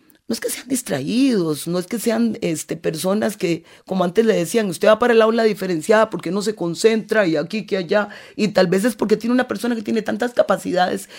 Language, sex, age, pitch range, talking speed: English, female, 30-49, 155-210 Hz, 220 wpm